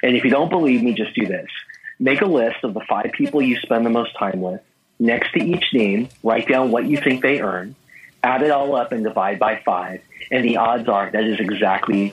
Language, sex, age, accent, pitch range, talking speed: English, male, 40-59, American, 120-150 Hz, 235 wpm